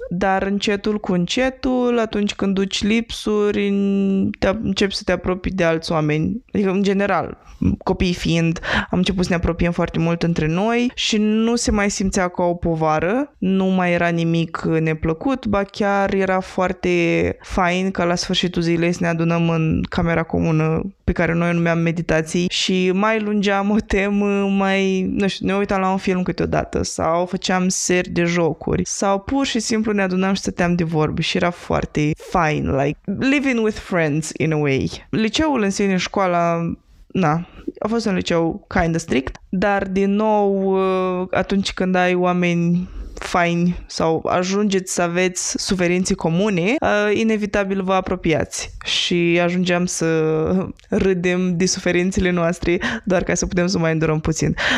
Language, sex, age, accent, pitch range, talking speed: Romanian, female, 20-39, native, 170-200 Hz, 160 wpm